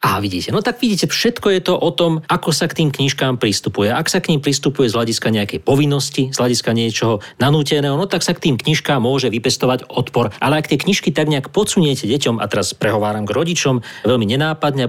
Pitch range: 115-145 Hz